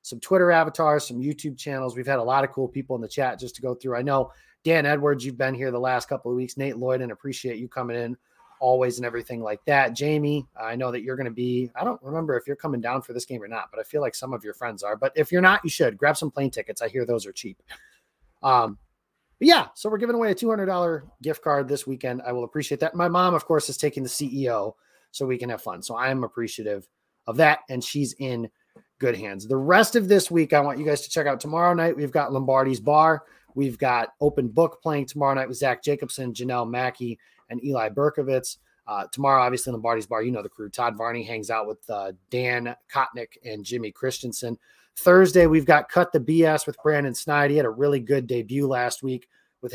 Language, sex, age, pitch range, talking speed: English, male, 30-49, 120-150 Hz, 240 wpm